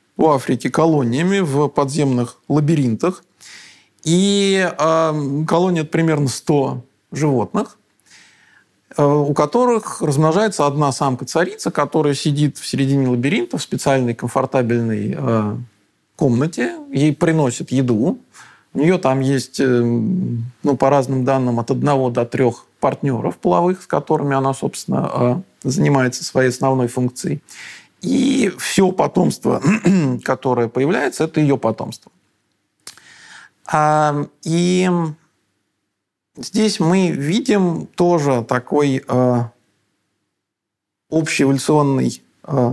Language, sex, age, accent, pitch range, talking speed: Russian, male, 40-59, native, 125-160 Hz, 95 wpm